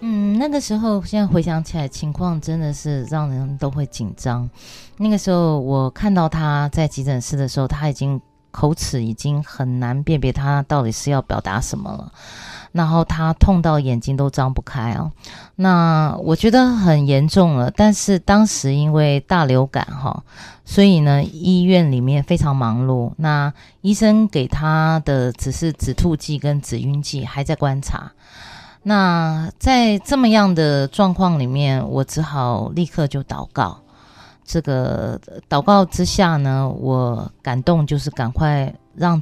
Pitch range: 135-170 Hz